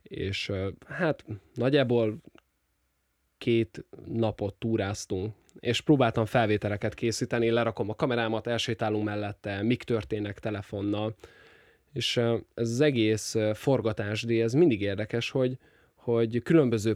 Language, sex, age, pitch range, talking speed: Hungarian, male, 10-29, 100-120 Hz, 105 wpm